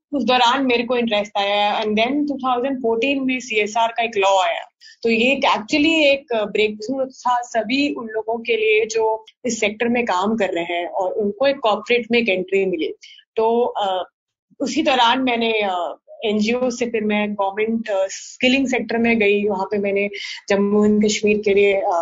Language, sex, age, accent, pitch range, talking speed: Hindi, female, 20-39, native, 200-240 Hz, 185 wpm